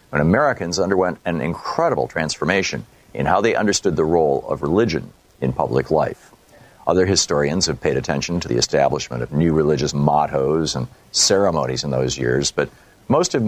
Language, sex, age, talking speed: English, male, 50-69, 165 wpm